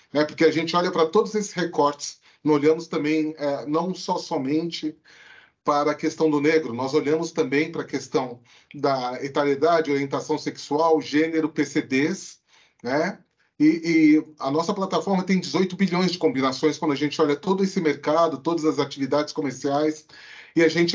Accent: Brazilian